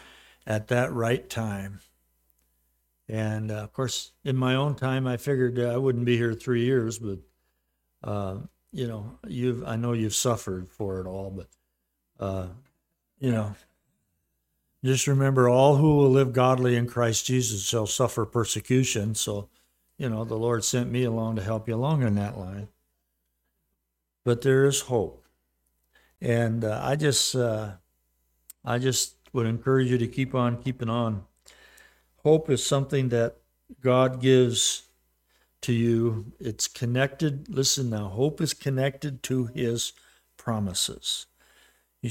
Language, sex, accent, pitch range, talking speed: English, male, American, 95-130 Hz, 145 wpm